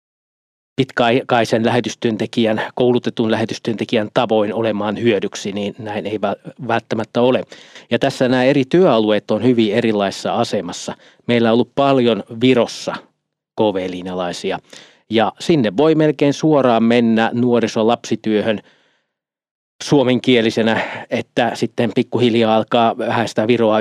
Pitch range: 105-120 Hz